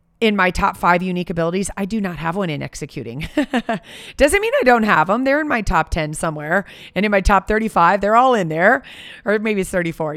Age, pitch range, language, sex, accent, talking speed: 30-49, 165-210 Hz, English, female, American, 225 wpm